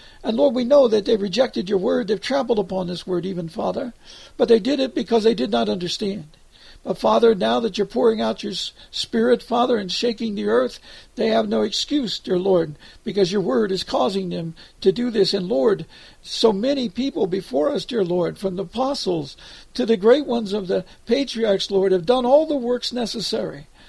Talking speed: 200 wpm